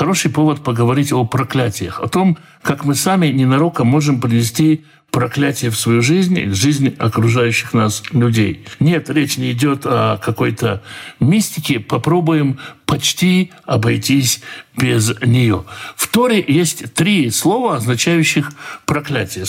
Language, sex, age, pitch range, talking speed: Russian, male, 60-79, 120-165 Hz, 125 wpm